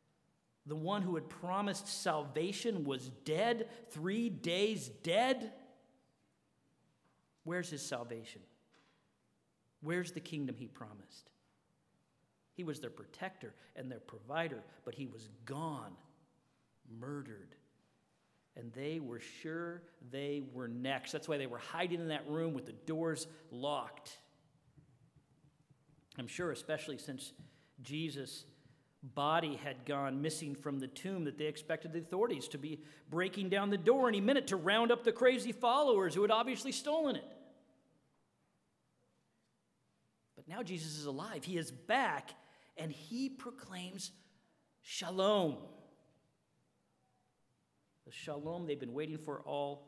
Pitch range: 130-180 Hz